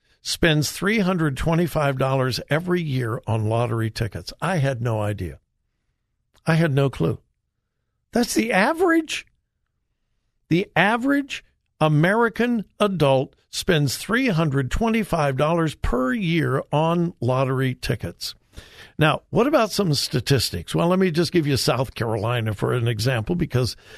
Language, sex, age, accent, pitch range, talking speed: English, male, 60-79, American, 125-195 Hz, 115 wpm